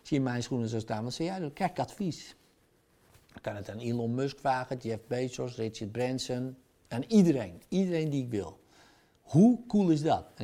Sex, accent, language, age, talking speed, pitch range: male, Dutch, Dutch, 50-69, 195 wpm, 110-165 Hz